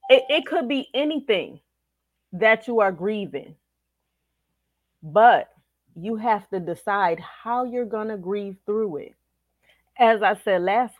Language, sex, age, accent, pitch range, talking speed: English, female, 30-49, American, 140-210 Hz, 130 wpm